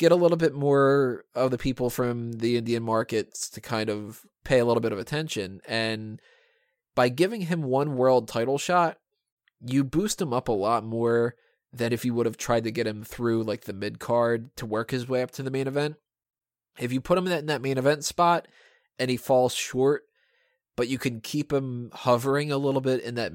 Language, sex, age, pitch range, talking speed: English, male, 20-39, 115-150 Hz, 220 wpm